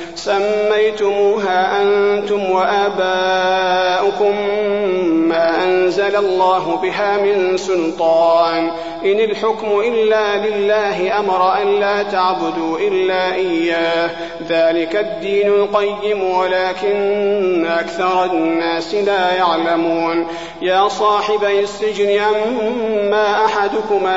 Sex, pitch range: male, 170-205 Hz